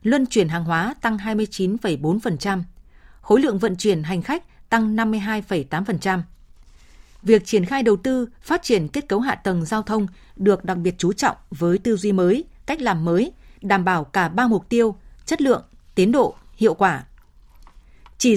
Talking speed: 170 wpm